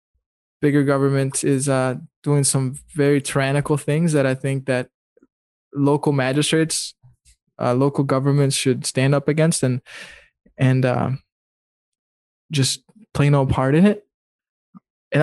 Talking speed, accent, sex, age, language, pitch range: 125 wpm, American, male, 20-39, English, 130-145 Hz